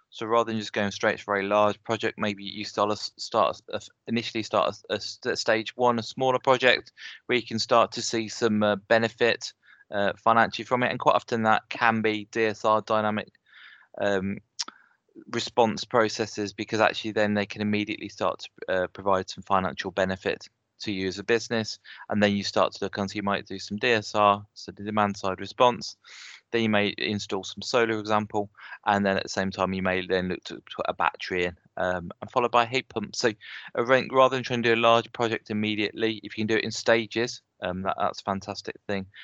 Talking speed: 210 wpm